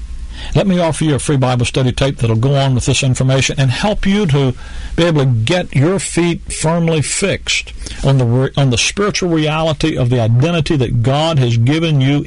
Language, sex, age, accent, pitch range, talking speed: English, male, 50-69, American, 95-145 Hz, 200 wpm